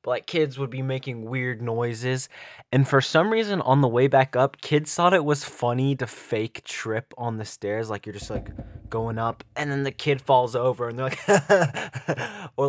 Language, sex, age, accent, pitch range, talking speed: English, male, 20-39, American, 110-140 Hz, 205 wpm